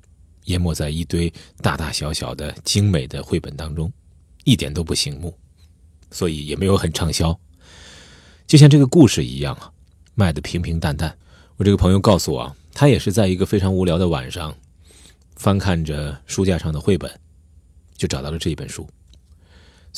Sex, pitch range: male, 80-90 Hz